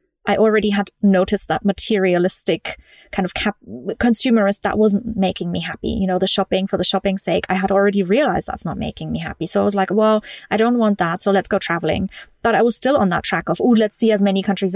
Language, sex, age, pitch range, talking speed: English, female, 30-49, 190-225 Hz, 235 wpm